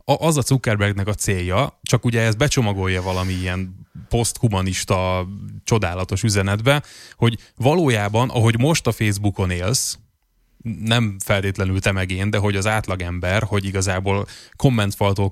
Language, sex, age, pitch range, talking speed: Hungarian, male, 20-39, 95-120 Hz, 130 wpm